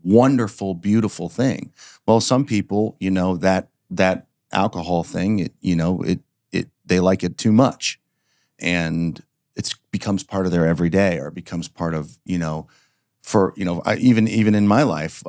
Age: 40-59